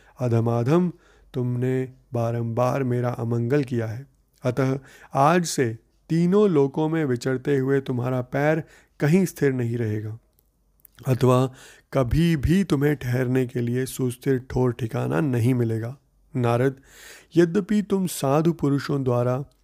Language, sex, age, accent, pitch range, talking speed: Hindi, male, 30-49, native, 120-145 Hz, 120 wpm